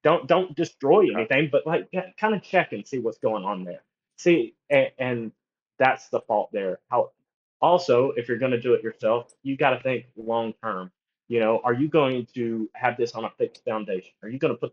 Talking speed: 215 wpm